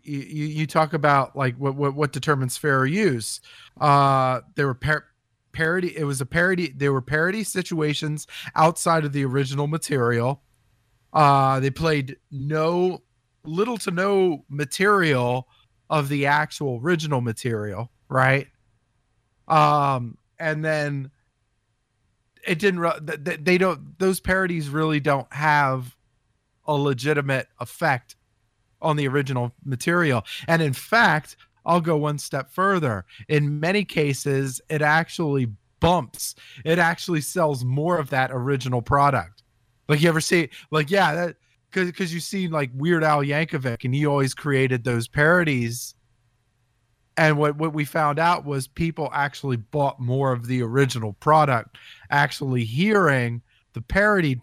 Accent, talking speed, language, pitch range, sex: American, 135 wpm, English, 125-160 Hz, male